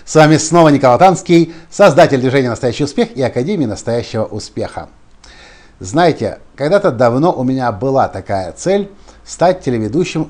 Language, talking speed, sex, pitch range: Russian, 135 wpm, male, 110-160 Hz